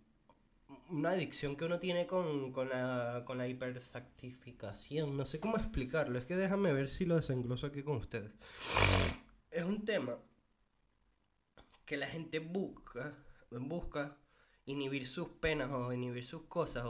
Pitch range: 120-155 Hz